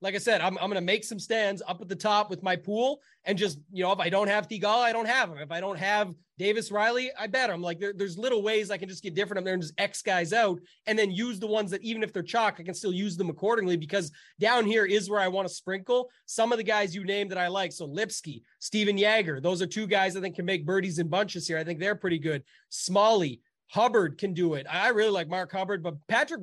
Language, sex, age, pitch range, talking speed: English, male, 30-49, 180-215 Hz, 280 wpm